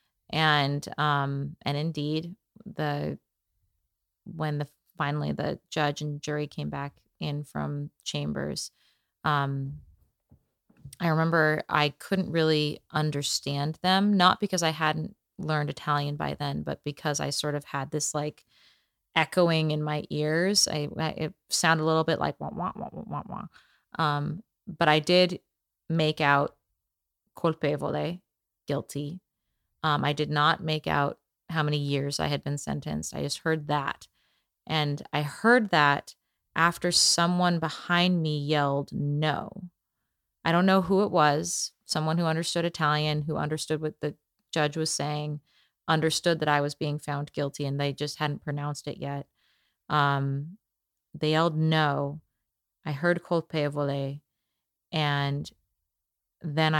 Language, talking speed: English, 140 wpm